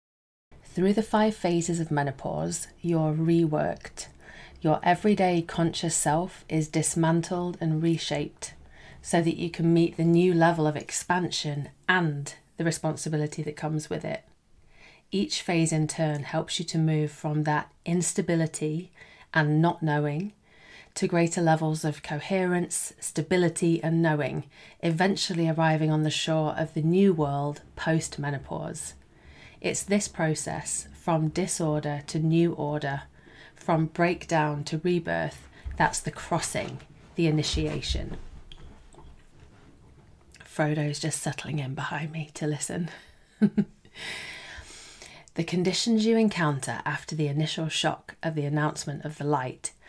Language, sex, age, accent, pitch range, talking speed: English, female, 30-49, British, 150-170 Hz, 125 wpm